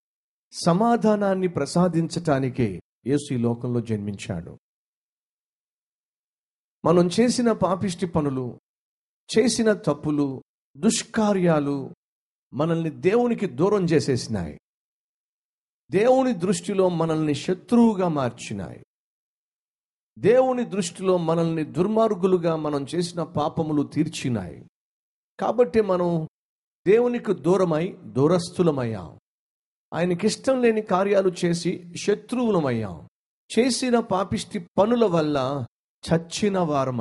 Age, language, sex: 50-69, Telugu, male